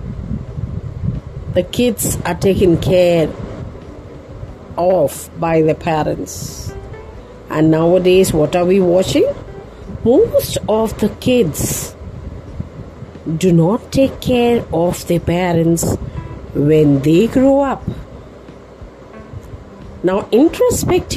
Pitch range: 150-250 Hz